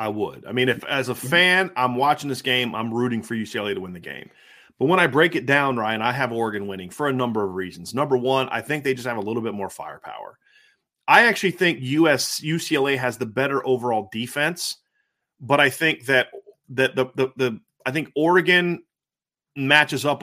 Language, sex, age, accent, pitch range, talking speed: English, male, 30-49, American, 125-160 Hz, 210 wpm